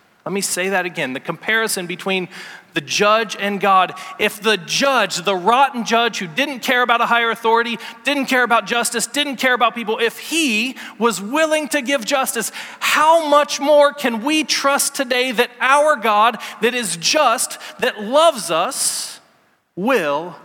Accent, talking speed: American, 165 wpm